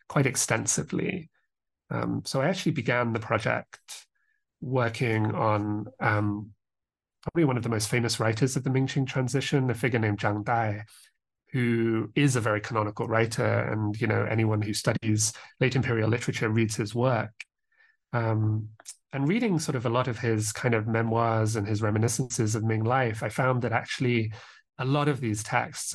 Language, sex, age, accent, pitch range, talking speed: English, male, 30-49, British, 110-130 Hz, 170 wpm